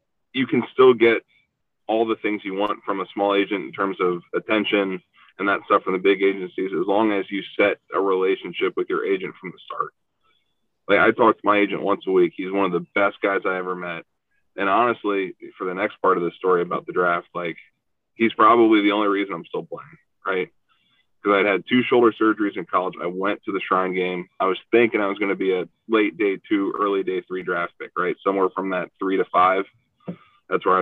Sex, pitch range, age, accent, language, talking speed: male, 95-115 Hz, 20-39, American, English, 230 wpm